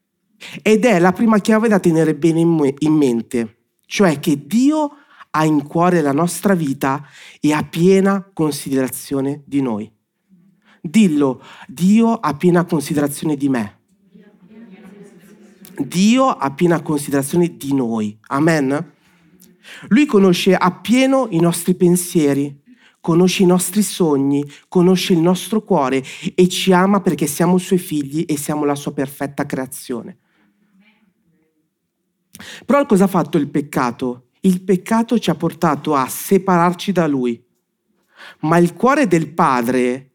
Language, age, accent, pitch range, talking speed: Italian, 30-49, native, 145-190 Hz, 130 wpm